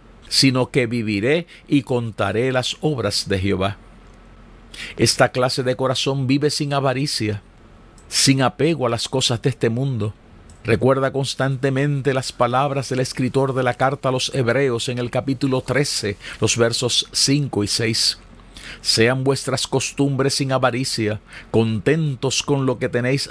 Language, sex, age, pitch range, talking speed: Spanish, male, 50-69, 110-135 Hz, 140 wpm